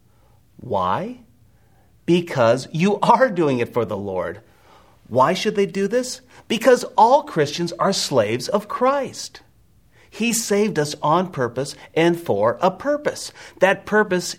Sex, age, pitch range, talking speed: male, 40-59, 110-175 Hz, 135 wpm